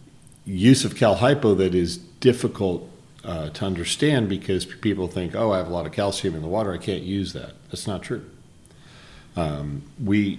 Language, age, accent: English, 40-59, American